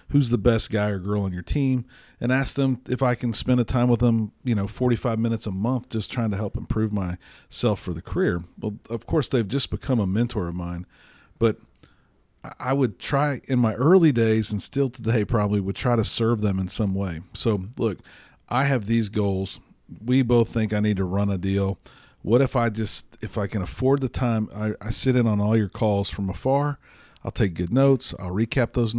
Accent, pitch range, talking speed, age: American, 100-120 Hz, 220 wpm, 40-59